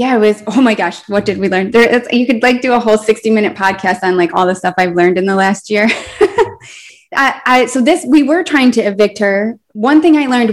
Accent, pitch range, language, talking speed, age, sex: American, 185-215 Hz, English, 260 wpm, 20-39, female